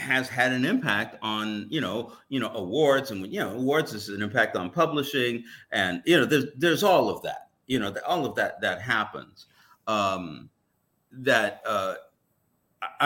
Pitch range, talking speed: 105-145 Hz, 170 wpm